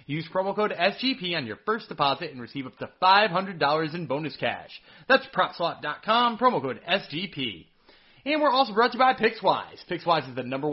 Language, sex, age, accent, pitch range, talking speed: English, male, 20-39, American, 150-215 Hz, 185 wpm